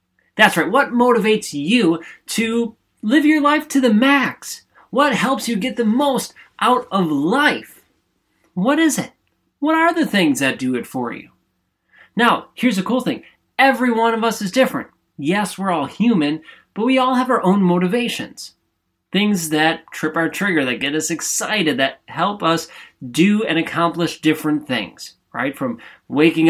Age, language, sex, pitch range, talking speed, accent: 20-39, English, male, 155-240 Hz, 170 wpm, American